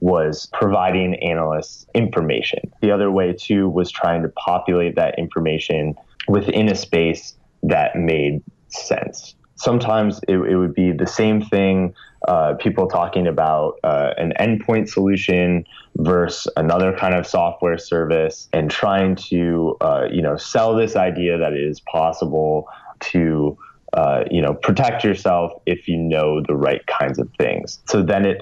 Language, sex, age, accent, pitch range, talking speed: English, male, 20-39, American, 80-95 Hz, 150 wpm